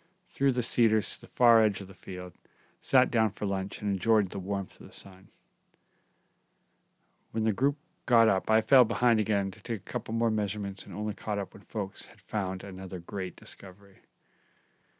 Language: English